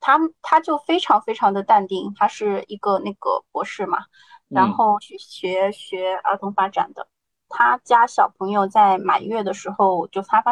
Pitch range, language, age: 200-300 Hz, Chinese, 20-39